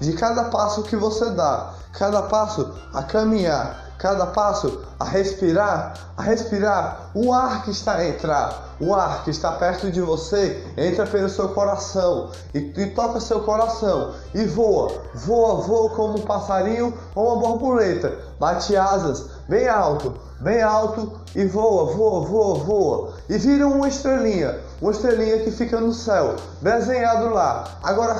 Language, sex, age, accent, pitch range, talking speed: Portuguese, male, 20-39, Brazilian, 190-225 Hz, 155 wpm